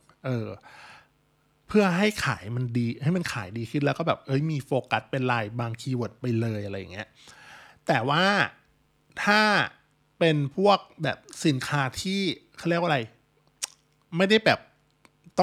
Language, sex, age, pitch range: Thai, male, 20-39, 120-150 Hz